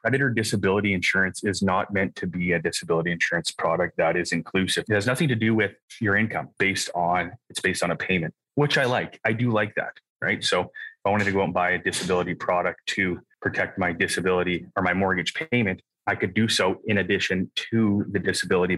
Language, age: English, 20-39